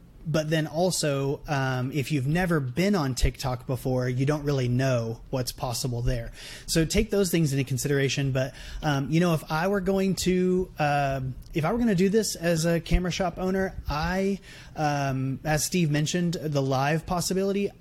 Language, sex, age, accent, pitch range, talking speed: English, male, 30-49, American, 135-165 Hz, 180 wpm